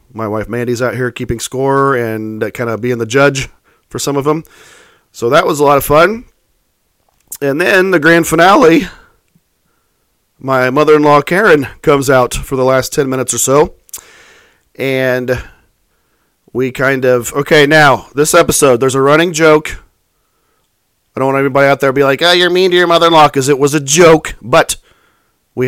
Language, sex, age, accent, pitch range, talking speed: English, male, 40-59, American, 130-165 Hz, 175 wpm